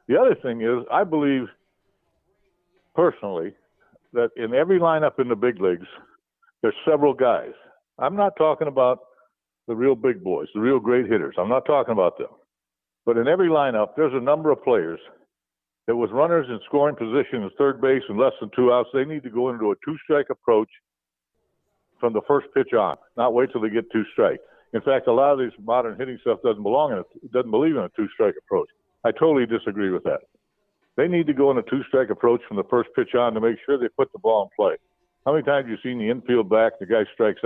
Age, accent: 60-79, American